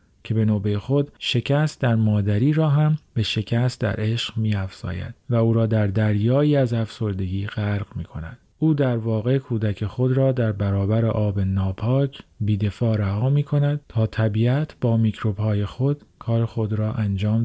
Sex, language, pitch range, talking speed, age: male, Persian, 105-125 Hz, 160 wpm, 40-59